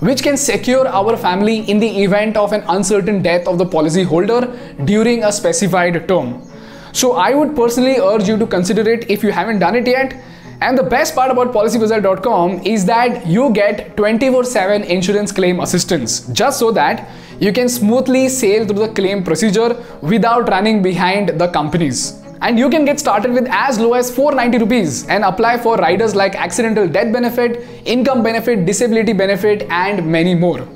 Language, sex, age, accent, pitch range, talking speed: Hindi, male, 20-39, native, 195-245 Hz, 180 wpm